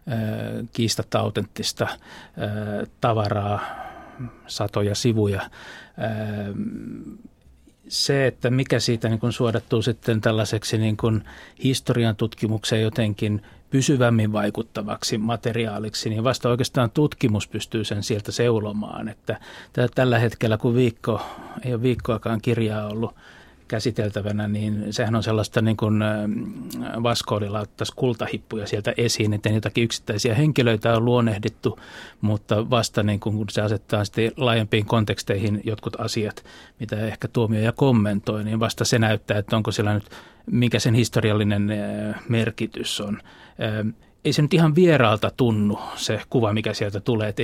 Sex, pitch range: male, 105-120 Hz